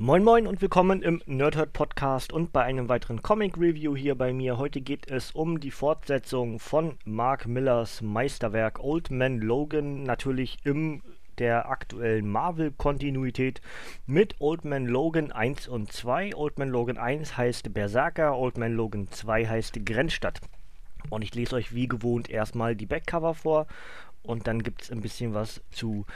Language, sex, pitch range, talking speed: German, male, 115-150 Hz, 165 wpm